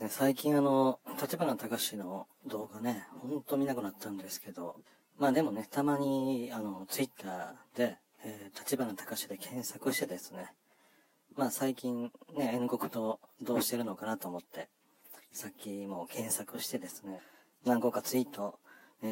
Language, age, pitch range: Japanese, 40-59, 105-130 Hz